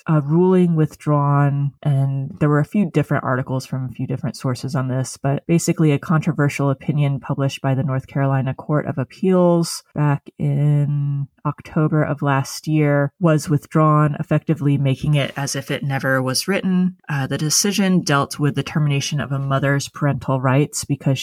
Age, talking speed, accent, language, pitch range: 30-49, 170 wpm, American, English, 135-155 Hz